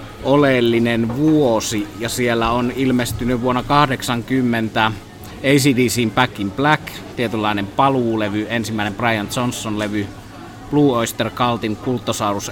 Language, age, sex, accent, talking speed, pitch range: Finnish, 30-49, male, native, 105 wpm, 105-120 Hz